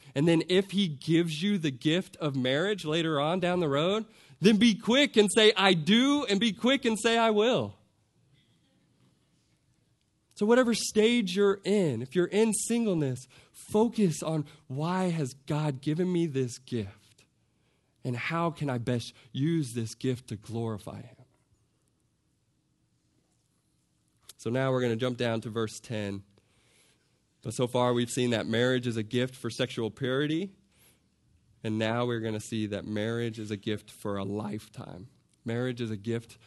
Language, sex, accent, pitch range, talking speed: English, male, American, 115-165 Hz, 160 wpm